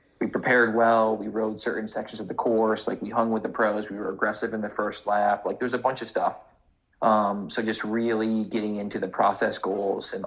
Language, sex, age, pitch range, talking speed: English, male, 30-49, 105-115 Hz, 230 wpm